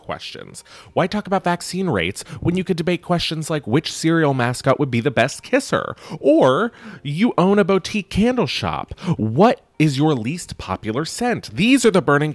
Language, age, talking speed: English, 30-49, 180 wpm